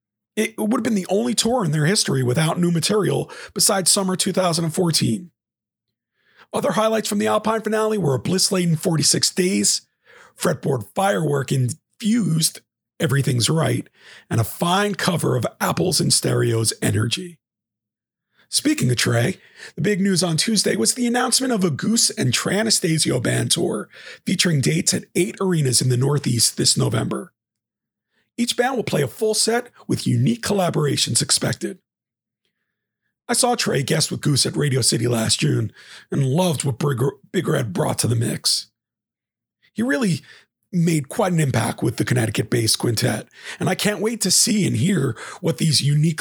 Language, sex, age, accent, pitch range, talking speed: English, male, 40-59, American, 125-200 Hz, 155 wpm